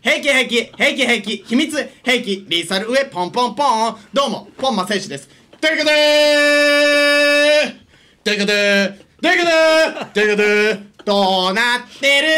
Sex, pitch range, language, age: male, 235-315 Hz, Japanese, 30-49